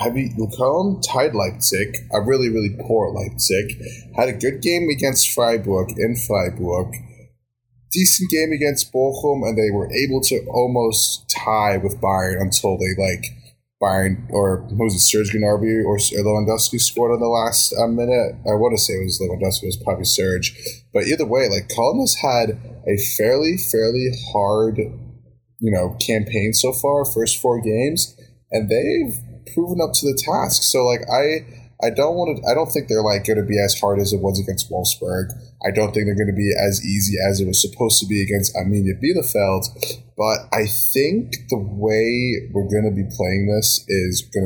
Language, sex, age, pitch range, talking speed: English, male, 10-29, 100-120 Hz, 185 wpm